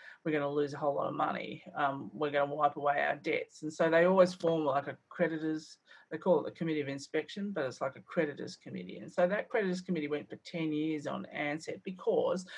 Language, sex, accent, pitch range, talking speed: English, female, Australian, 155-190 Hz, 230 wpm